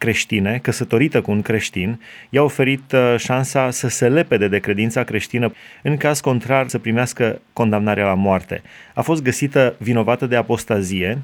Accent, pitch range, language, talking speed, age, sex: native, 105-130 Hz, Romanian, 145 wpm, 30-49, male